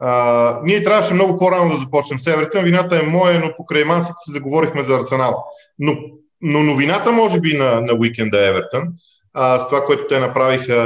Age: 40-59